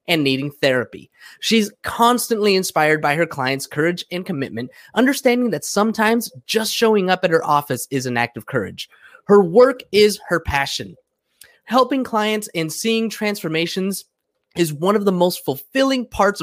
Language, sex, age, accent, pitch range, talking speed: English, male, 20-39, American, 155-230 Hz, 155 wpm